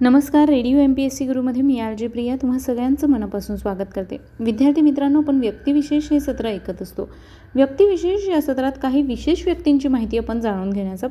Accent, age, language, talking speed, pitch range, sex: native, 30-49, Marathi, 175 wpm, 210-285 Hz, female